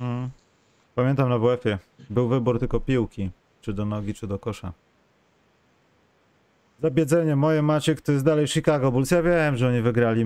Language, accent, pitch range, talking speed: Polish, native, 105-125 Hz, 150 wpm